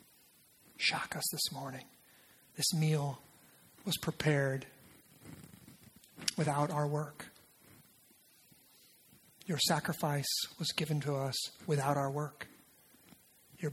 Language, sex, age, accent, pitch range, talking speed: English, male, 40-59, American, 135-155 Hz, 90 wpm